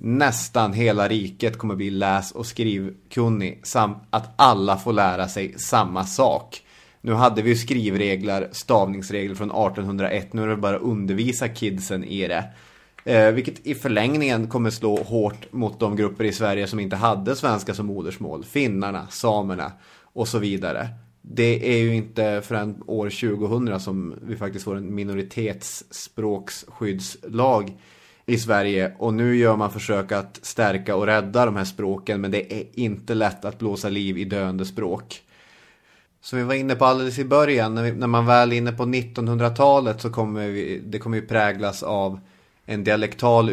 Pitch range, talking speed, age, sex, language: 100-115 Hz, 165 wpm, 30-49, male, English